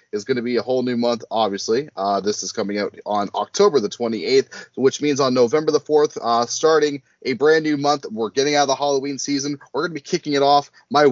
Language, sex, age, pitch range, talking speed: English, male, 30-49, 115-160 Hz, 245 wpm